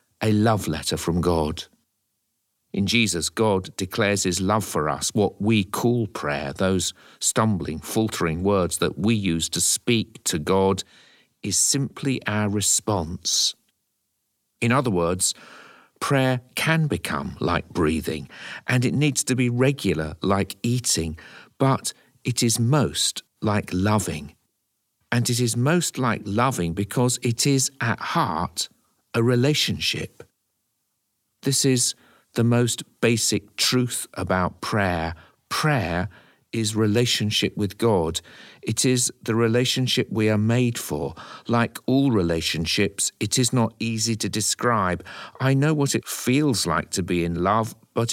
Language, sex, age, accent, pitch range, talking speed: English, male, 50-69, British, 95-125 Hz, 135 wpm